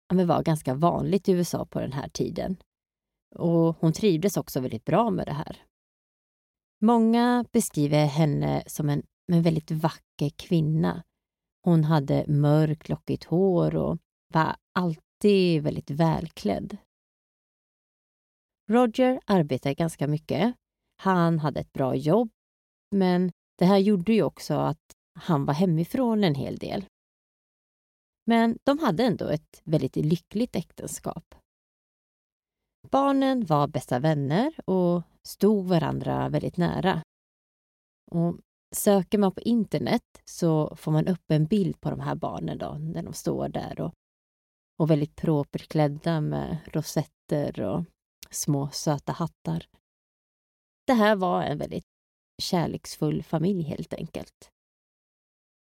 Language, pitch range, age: Swedish, 150-200 Hz, 30-49